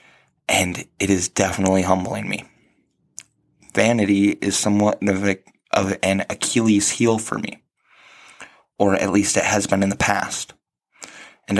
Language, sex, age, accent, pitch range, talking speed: English, male, 20-39, American, 100-110 Hz, 135 wpm